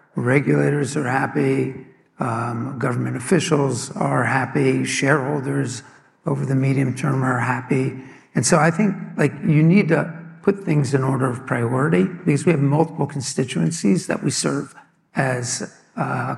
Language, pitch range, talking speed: English, 130-160 Hz, 145 wpm